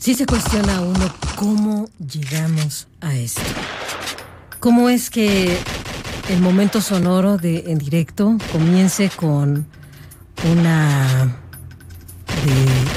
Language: Spanish